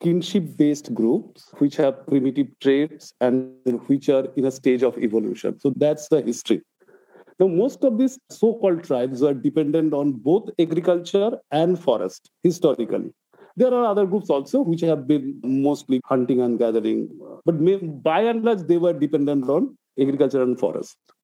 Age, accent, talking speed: 50-69, Indian, 155 wpm